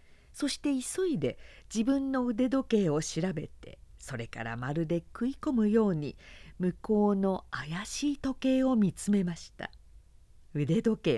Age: 50-69